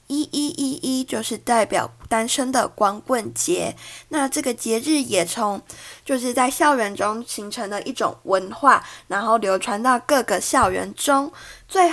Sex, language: female, Chinese